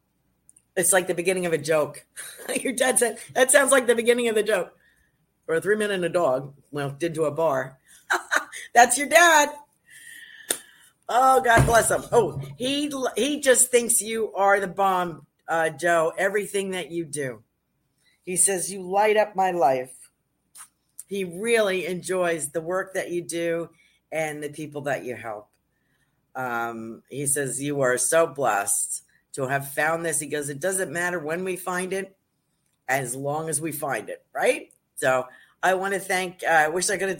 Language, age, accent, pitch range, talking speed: English, 50-69, American, 145-190 Hz, 175 wpm